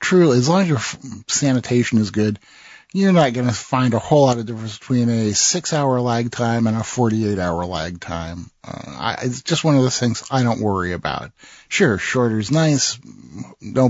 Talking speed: 195 wpm